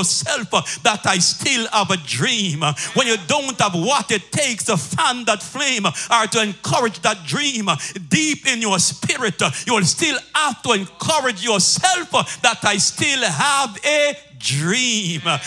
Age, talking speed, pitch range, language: 50-69, 160 wpm, 185-245 Hz, English